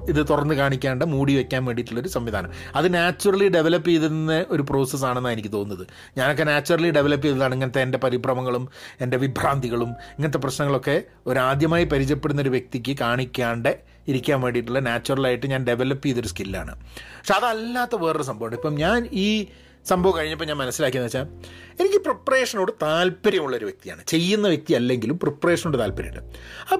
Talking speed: 135 wpm